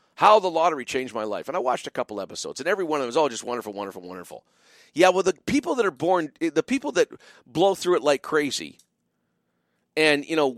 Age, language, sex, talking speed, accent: 50-69, English, male, 240 wpm, American